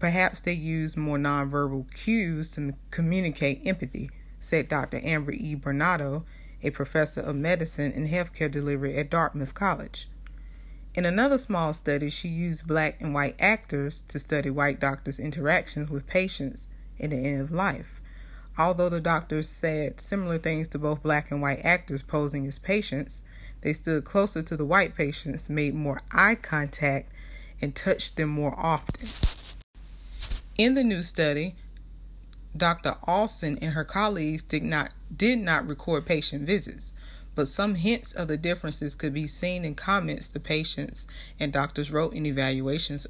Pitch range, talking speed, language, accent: 140-170 Hz, 155 wpm, English, American